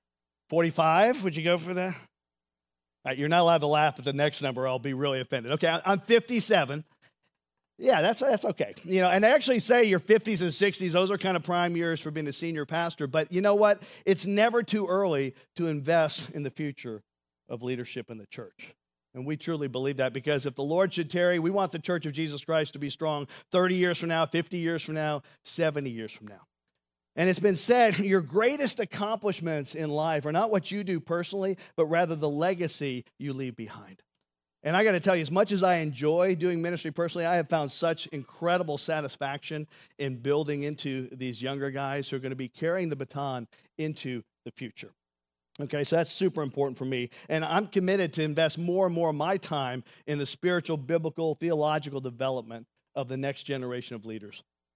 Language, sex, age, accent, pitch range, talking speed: English, male, 40-59, American, 135-180 Hz, 205 wpm